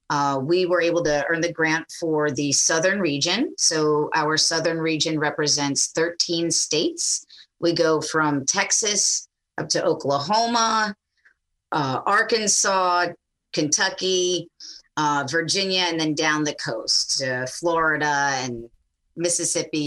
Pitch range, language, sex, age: 145-180 Hz, English, female, 30-49